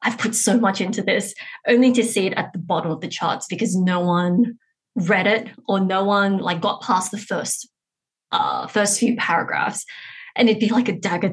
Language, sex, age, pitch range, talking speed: English, female, 20-39, 195-245 Hz, 205 wpm